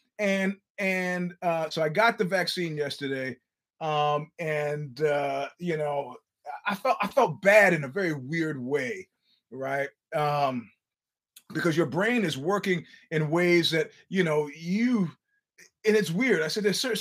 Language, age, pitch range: English, 30-49, 155-215 Hz